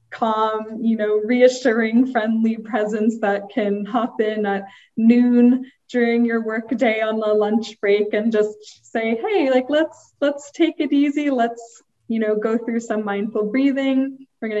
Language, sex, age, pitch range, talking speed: English, female, 20-39, 210-245 Hz, 165 wpm